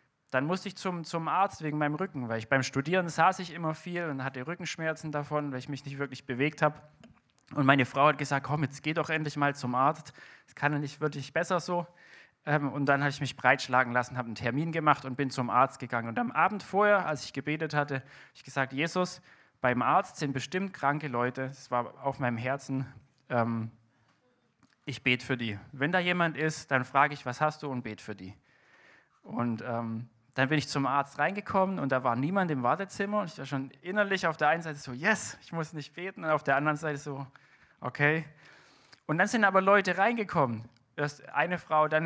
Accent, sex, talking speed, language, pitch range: German, male, 215 wpm, German, 135-175 Hz